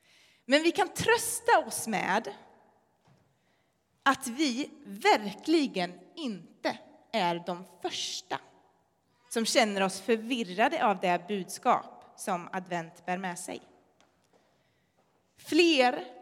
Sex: female